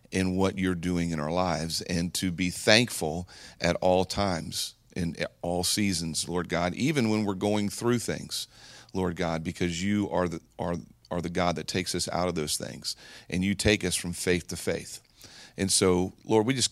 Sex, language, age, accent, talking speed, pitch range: male, English, 40-59, American, 195 wpm, 85-95 Hz